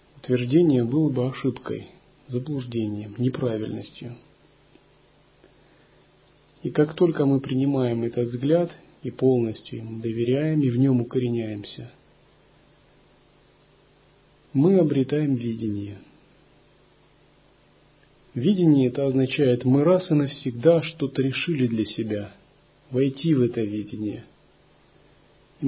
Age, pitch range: 40-59, 120-150 Hz